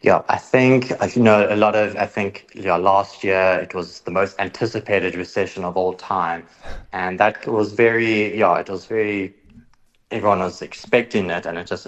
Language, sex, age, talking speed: English, male, 30-49, 190 wpm